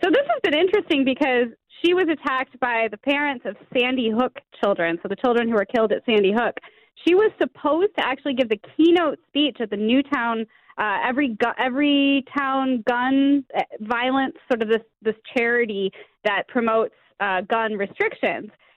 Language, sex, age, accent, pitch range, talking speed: English, female, 20-39, American, 225-290 Hz, 175 wpm